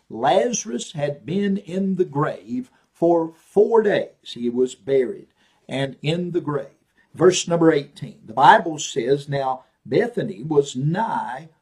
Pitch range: 140-190 Hz